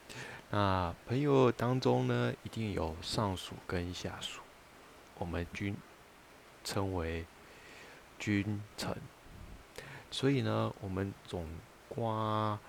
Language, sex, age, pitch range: Chinese, male, 20-39, 90-105 Hz